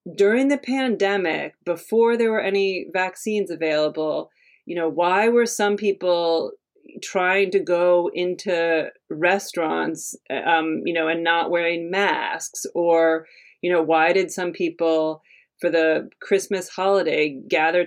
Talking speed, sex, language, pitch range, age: 130 wpm, female, English, 165-205 Hz, 30-49